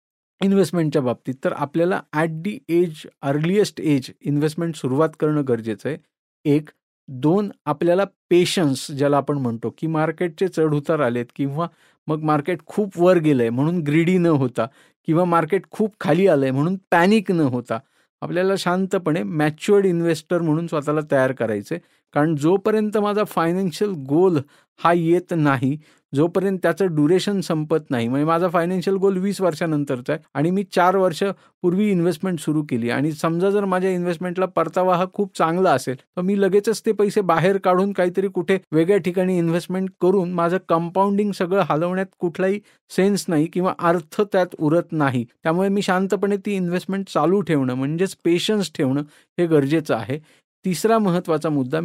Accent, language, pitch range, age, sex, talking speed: native, Marathi, 150-190 Hz, 50-69, male, 95 wpm